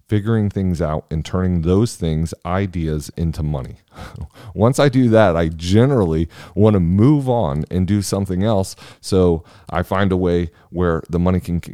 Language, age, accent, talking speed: English, 30-49, American, 170 wpm